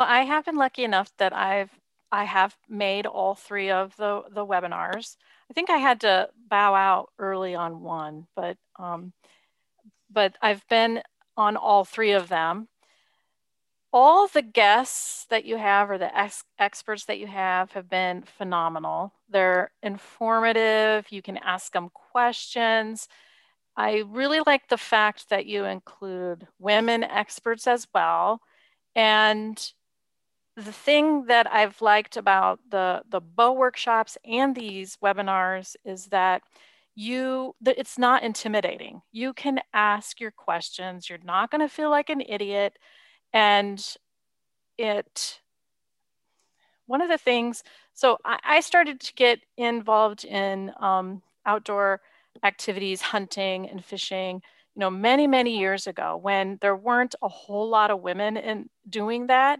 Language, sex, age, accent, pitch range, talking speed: English, female, 40-59, American, 195-235 Hz, 140 wpm